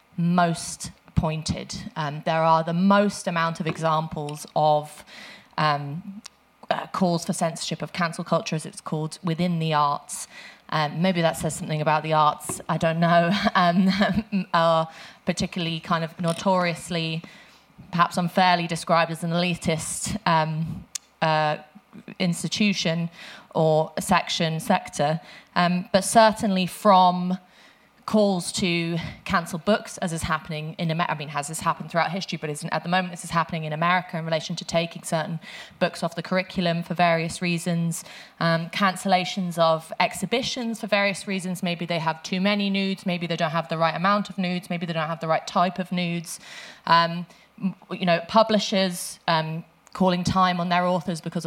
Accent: British